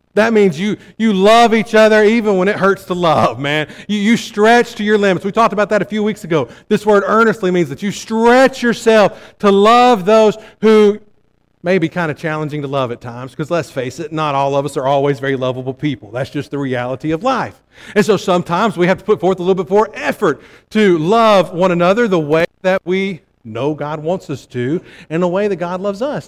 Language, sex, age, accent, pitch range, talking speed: English, male, 50-69, American, 125-195 Hz, 230 wpm